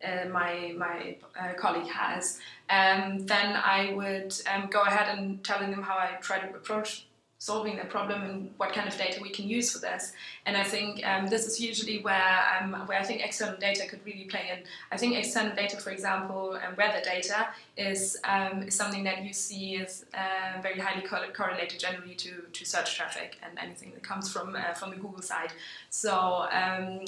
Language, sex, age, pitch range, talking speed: English, female, 20-39, 185-205 Hz, 200 wpm